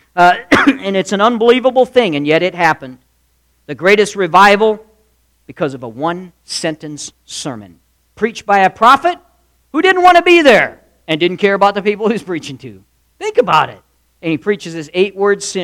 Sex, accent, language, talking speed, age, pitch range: male, American, English, 175 wpm, 50-69, 115-165 Hz